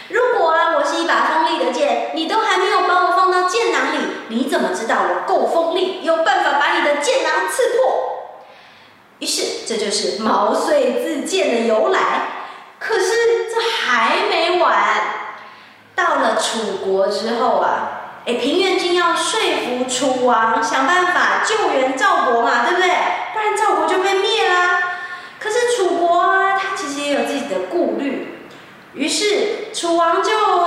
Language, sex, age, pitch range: Chinese, female, 20-39, 275-405 Hz